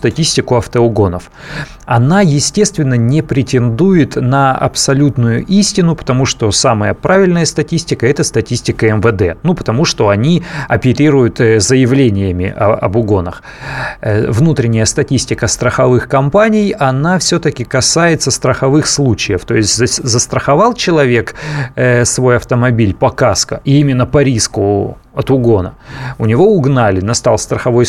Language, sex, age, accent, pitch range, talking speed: Russian, male, 30-49, native, 115-155 Hz, 115 wpm